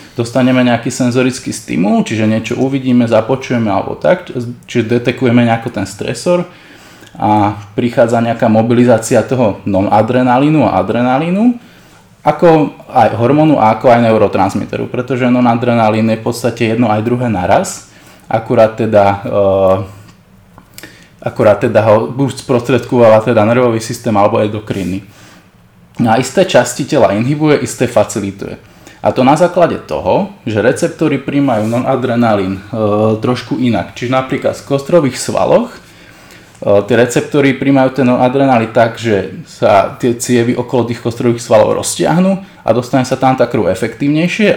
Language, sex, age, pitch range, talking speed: Slovak, male, 20-39, 110-130 Hz, 130 wpm